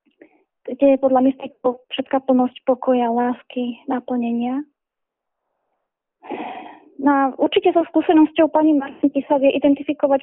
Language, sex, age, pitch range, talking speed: Slovak, female, 20-39, 255-290 Hz, 105 wpm